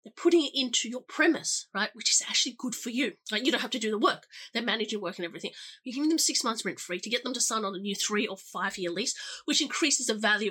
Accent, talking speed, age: Australian, 290 wpm, 30-49